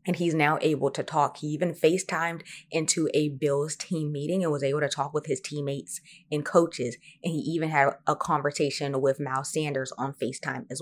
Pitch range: 140-160 Hz